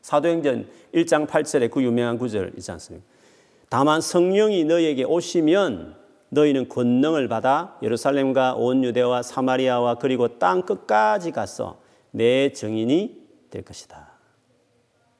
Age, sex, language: 40-59, male, Korean